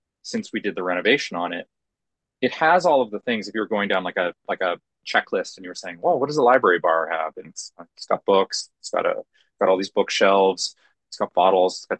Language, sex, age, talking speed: English, male, 30-49, 245 wpm